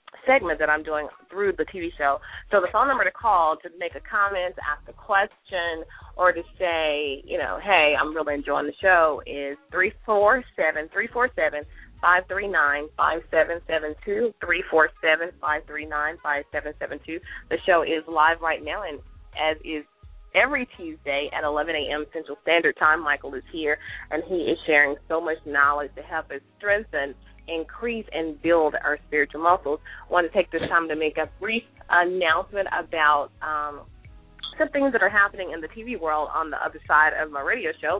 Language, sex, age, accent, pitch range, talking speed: English, female, 30-49, American, 150-180 Hz, 160 wpm